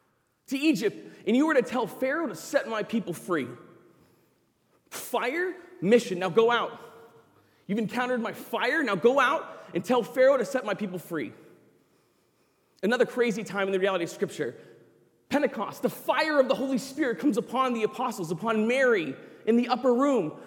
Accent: American